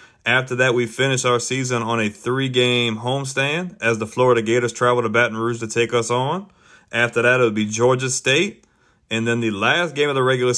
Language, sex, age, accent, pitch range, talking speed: English, male, 30-49, American, 115-135 Hz, 205 wpm